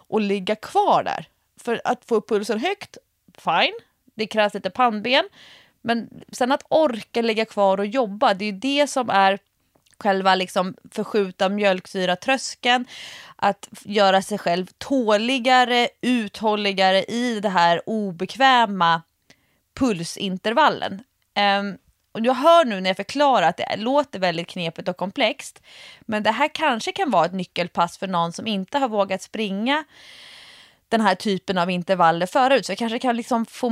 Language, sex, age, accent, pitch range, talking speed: Swedish, female, 30-49, native, 190-255 Hz, 150 wpm